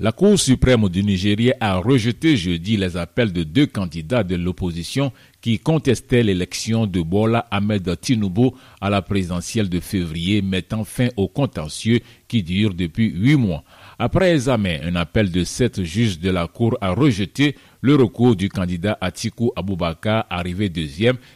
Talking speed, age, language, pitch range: 155 wpm, 50-69, French, 95-125 Hz